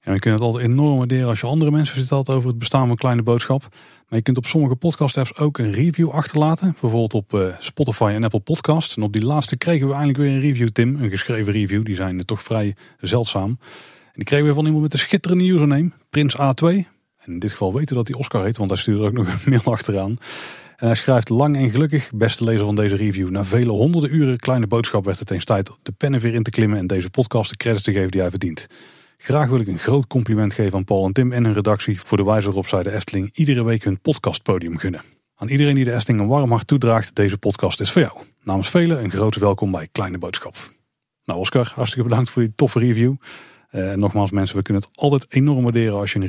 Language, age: Dutch, 30-49